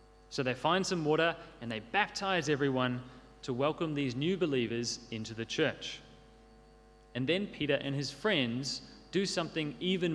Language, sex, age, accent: Korean, male, 30-49, Australian